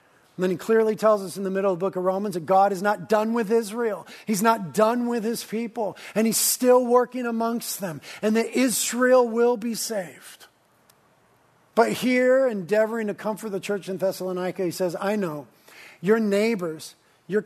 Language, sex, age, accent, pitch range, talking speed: English, male, 50-69, American, 175-230 Hz, 190 wpm